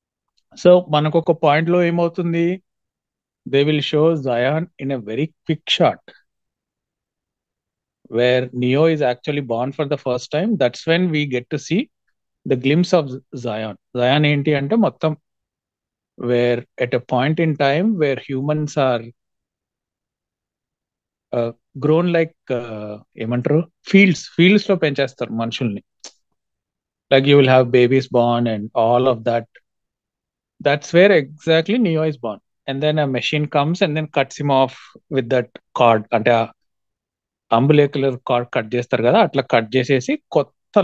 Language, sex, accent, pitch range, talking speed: Telugu, male, native, 125-160 Hz, 145 wpm